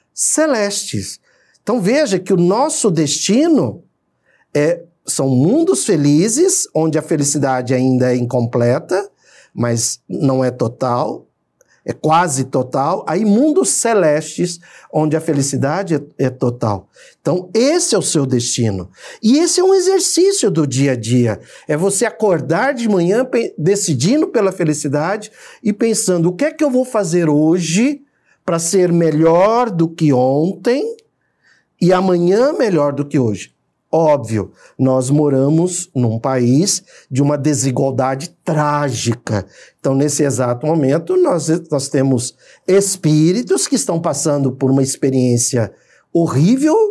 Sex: male